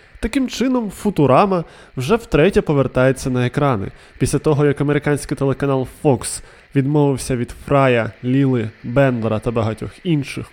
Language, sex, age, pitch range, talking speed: Ukrainian, male, 20-39, 135-185 Hz, 125 wpm